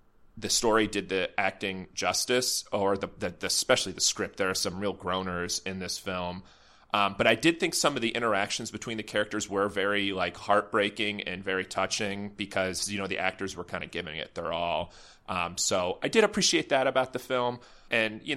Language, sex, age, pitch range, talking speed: English, male, 30-49, 95-110 Hz, 205 wpm